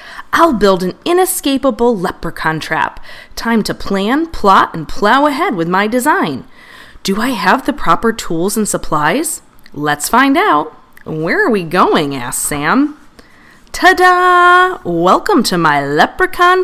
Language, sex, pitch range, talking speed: English, female, 175-285 Hz, 135 wpm